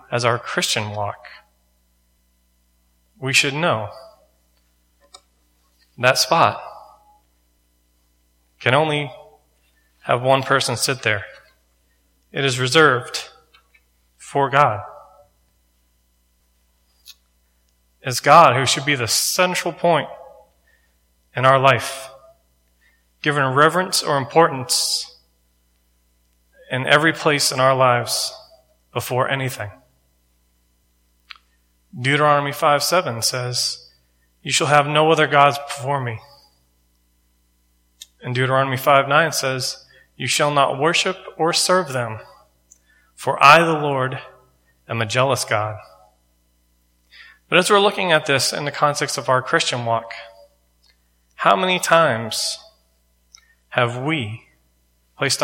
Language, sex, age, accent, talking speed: English, male, 30-49, American, 100 wpm